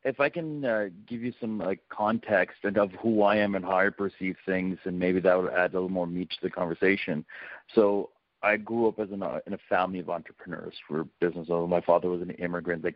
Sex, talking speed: male, 245 wpm